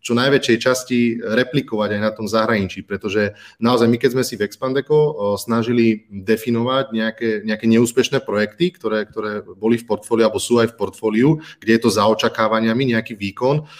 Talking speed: 175 wpm